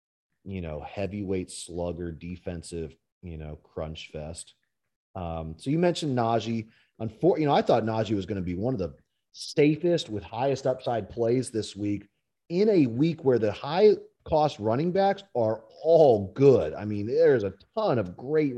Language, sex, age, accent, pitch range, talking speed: English, male, 30-49, American, 95-140 Hz, 170 wpm